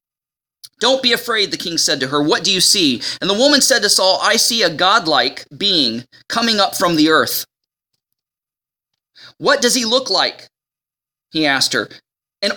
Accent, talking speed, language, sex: American, 175 wpm, English, male